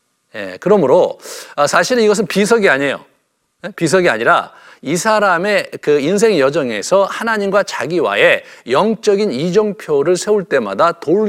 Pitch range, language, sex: 175-245 Hz, Korean, male